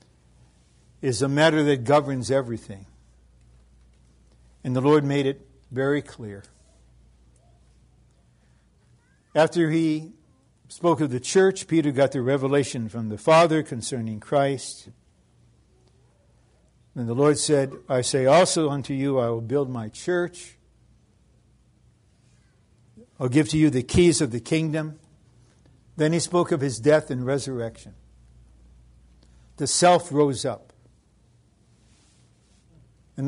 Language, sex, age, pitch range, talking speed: English, male, 60-79, 100-150 Hz, 115 wpm